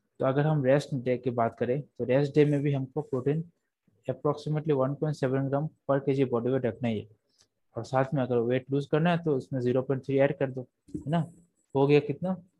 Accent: native